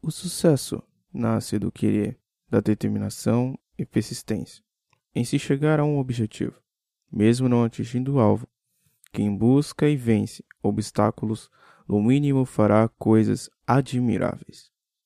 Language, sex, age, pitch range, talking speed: Portuguese, male, 20-39, 110-135 Hz, 120 wpm